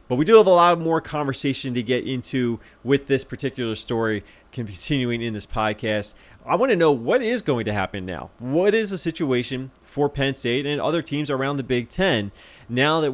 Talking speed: 205 wpm